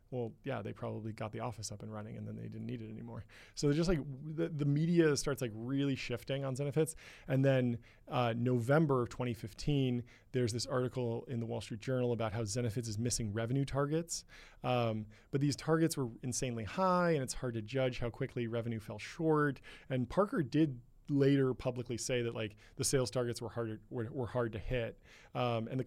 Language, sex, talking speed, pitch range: English, male, 200 wpm, 115-135 Hz